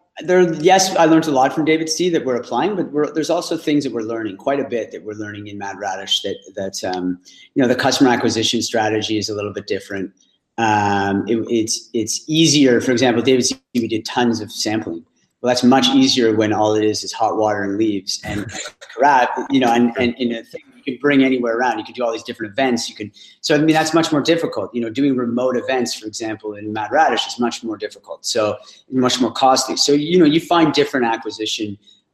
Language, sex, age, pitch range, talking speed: English, male, 30-49, 110-145 Hz, 235 wpm